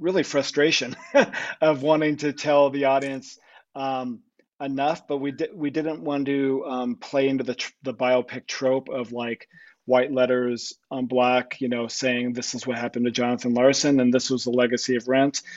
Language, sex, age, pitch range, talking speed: English, male, 40-59, 125-145 Hz, 185 wpm